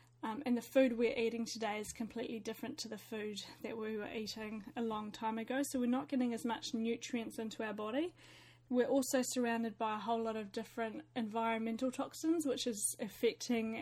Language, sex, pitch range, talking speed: English, female, 225-255 Hz, 195 wpm